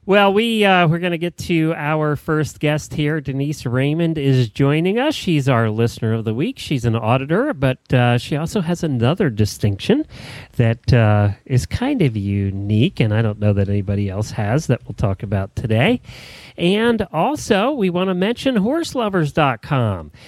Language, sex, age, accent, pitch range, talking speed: English, male, 40-59, American, 120-170 Hz, 180 wpm